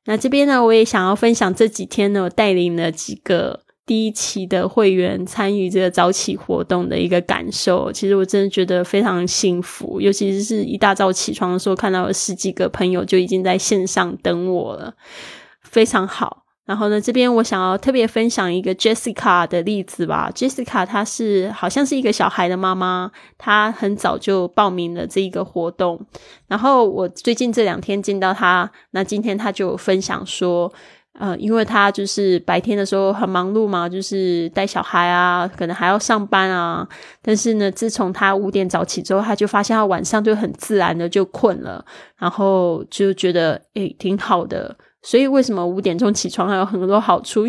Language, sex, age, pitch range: Chinese, female, 20-39, 185-215 Hz